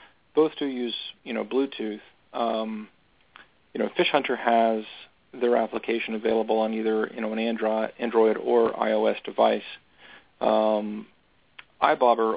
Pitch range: 105-115 Hz